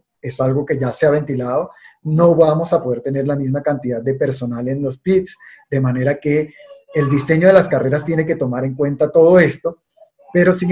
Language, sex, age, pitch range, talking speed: Spanish, male, 30-49, 130-160 Hz, 205 wpm